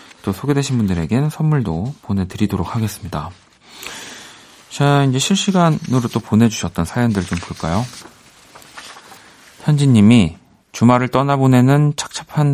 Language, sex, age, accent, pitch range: Korean, male, 40-59, native, 90-130 Hz